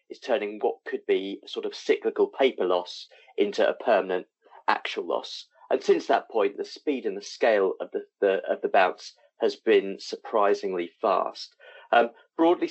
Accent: British